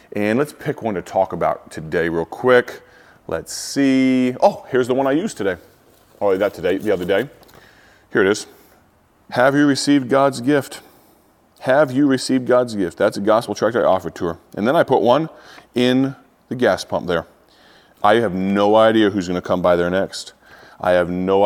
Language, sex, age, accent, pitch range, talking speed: English, male, 30-49, American, 95-110 Hz, 195 wpm